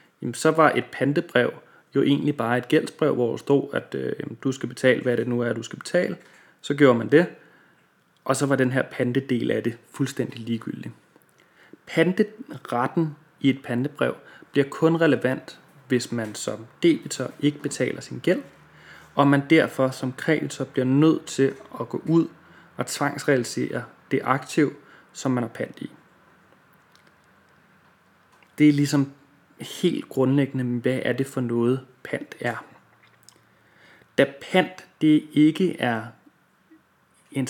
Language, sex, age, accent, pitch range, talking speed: Danish, male, 30-49, native, 125-145 Hz, 145 wpm